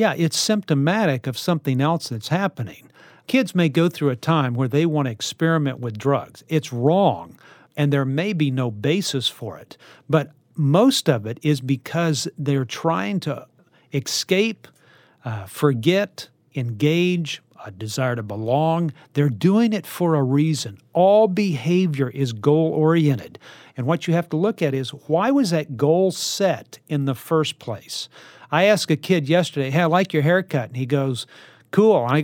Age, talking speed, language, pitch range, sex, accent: 50-69, 170 wpm, English, 135-175 Hz, male, American